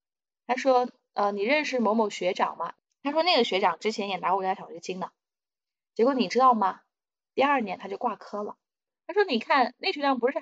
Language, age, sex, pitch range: Chinese, 20-39, female, 190-250 Hz